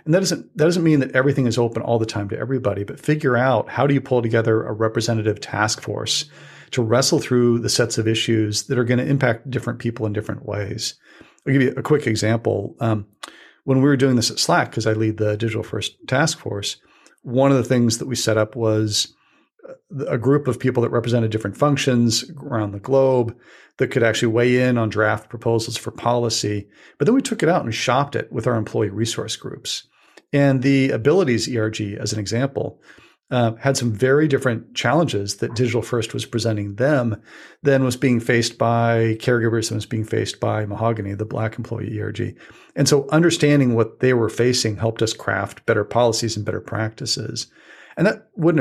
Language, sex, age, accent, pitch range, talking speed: English, male, 40-59, American, 110-130 Hz, 200 wpm